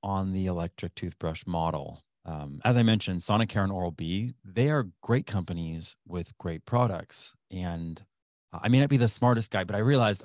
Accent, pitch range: American, 85-115 Hz